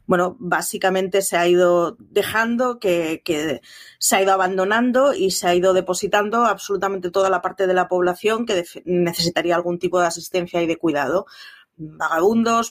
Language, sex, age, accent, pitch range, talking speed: Spanish, female, 30-49, Spanish, 170-205 Hz, 160 wpm